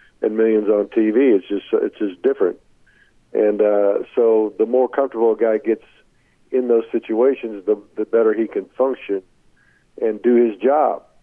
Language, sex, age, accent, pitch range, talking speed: English, male, 50-69, American, 110-130 Hz, 165 wpm